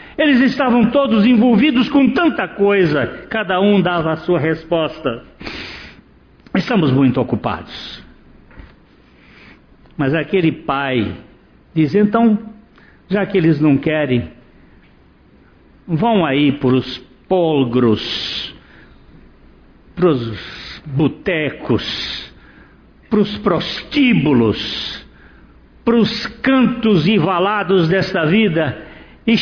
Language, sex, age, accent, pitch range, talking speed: Portuguese, male, 60-79, Brazilian, 130-215 Hz, 90 wpm